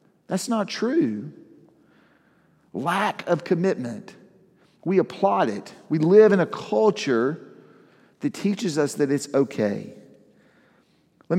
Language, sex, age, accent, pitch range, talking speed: English, male, 50-69, American, 125-165 Hz, 110 wpm